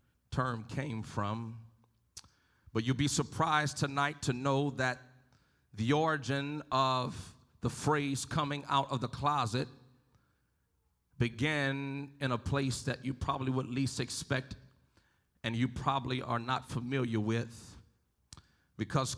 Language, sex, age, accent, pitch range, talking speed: English, male, 40-59, American, 125-150 Hz, 120 wpm